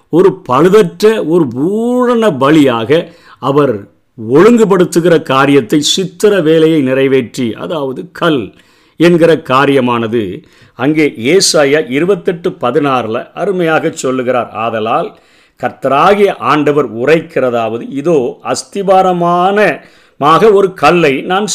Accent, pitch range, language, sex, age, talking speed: native, 130-185 Hz, Tamil, male, 50-69, 85 wpm